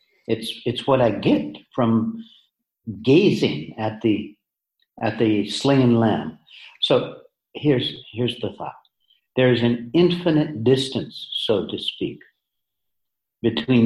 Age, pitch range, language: 60-79, 115-145 Hz, English